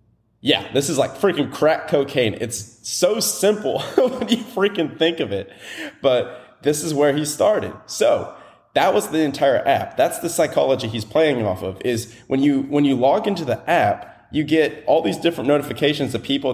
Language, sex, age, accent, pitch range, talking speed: English, male, 30-49, American, 115-160 Hz, 190 wpm